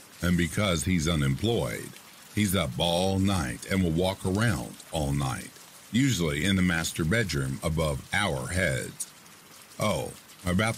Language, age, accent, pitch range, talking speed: English, 50-69, American, 75-95 Hz, 135 wpm